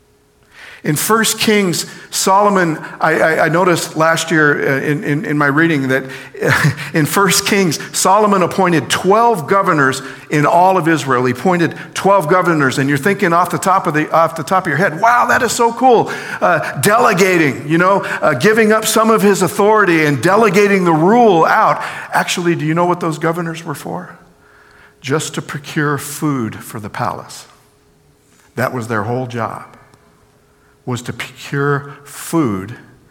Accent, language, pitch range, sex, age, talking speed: American, English, 145-190 Hz, male, 50-69, 165 wpm